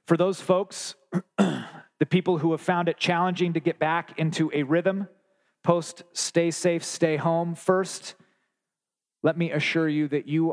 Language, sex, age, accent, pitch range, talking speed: English, male, 40-59, American, 135-165 Hz, 160 wpm